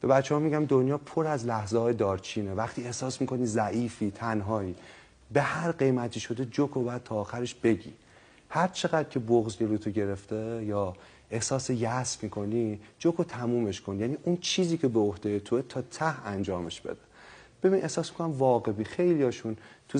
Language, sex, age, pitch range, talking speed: Persian, male, 30-49, 105-135 Hz, 170 wpm